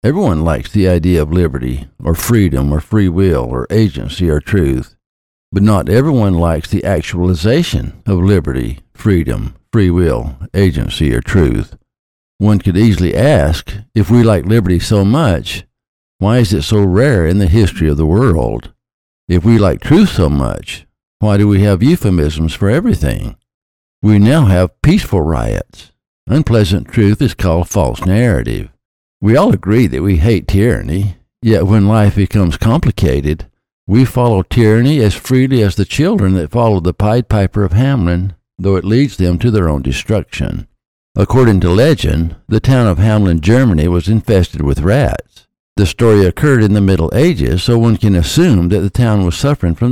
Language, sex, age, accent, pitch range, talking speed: English, male, 60-79, American, 85-110 Hz, 165 wpm